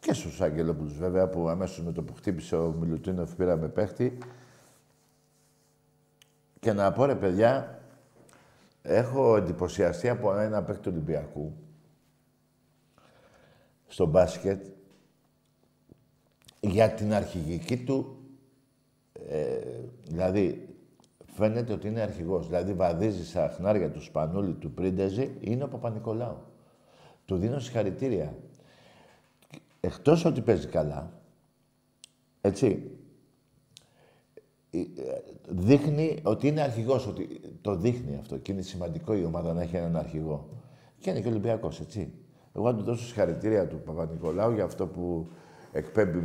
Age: 60-79